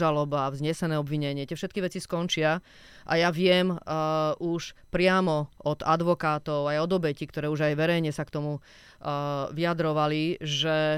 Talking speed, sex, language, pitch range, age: 155 wpm, female, Slovak, 155-185 Hz, 30-49